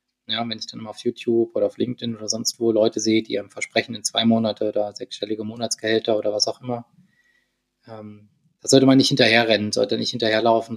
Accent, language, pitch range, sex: German, German, 115-135 Hz, male